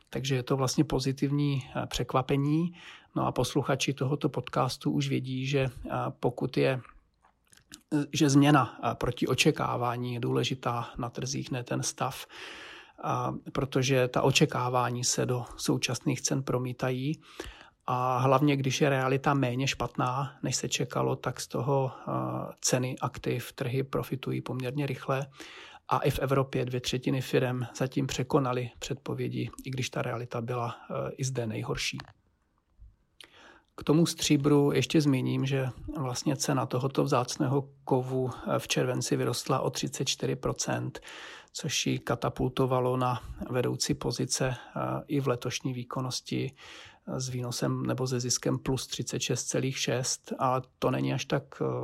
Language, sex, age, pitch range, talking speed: Czech, male, 40-59, 120-140 Hz, 125 wpm